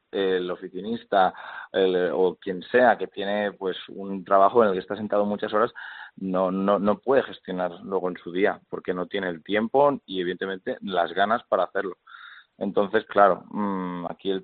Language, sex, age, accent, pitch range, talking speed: Spanish, male, 30-49, Spanish, 95-120 Hz, 175 wpm